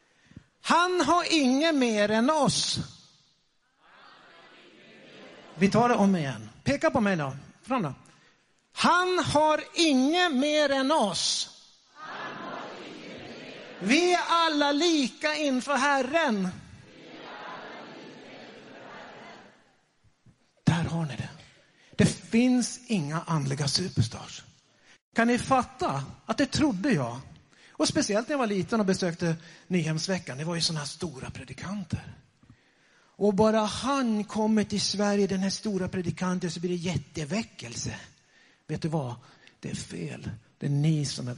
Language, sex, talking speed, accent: Swedish, male, 120 wpm, native